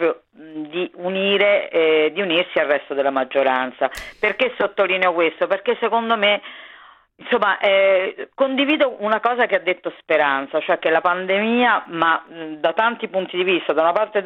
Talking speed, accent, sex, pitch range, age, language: 165 wpm, native, female, 155-210 Hz, 40-59, Italian